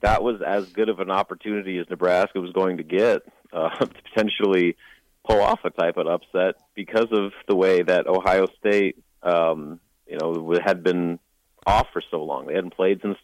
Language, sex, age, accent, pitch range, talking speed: English, male, 30-49, American, 90-105 Hz, 190 wpm